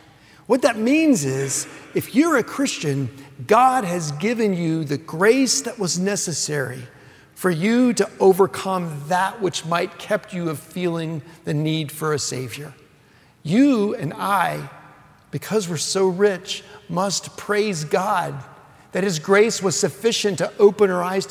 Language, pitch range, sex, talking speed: English, 155-210 Hz, male, 145 wpm